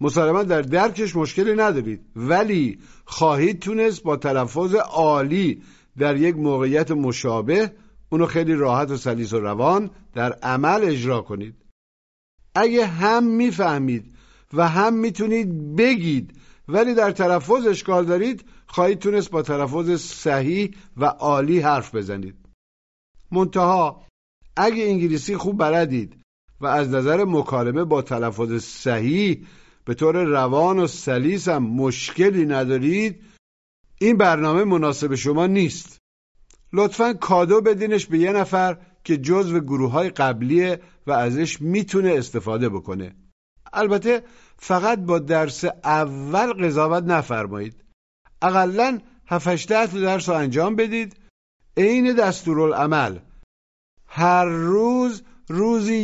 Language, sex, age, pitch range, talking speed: Persian, male, 50-69, 130-200 Hz, 115 wpm